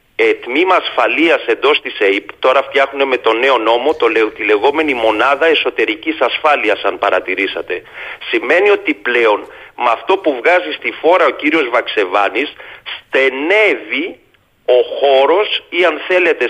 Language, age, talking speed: Greek, 40-59, 140 wpm